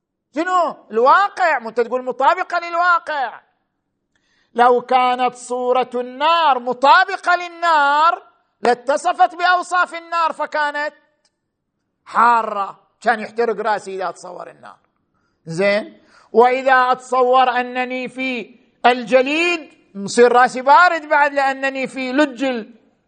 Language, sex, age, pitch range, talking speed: Arabic, male, 50-69, 225-300 Hz, 95 wpm